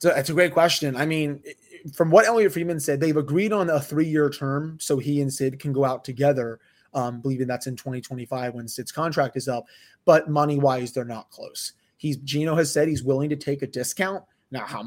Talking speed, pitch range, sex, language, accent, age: 215 wpm, 130-155 Hz, male, English, American, 20-39